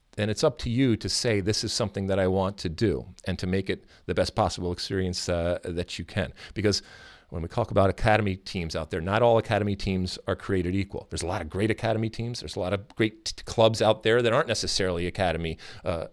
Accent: American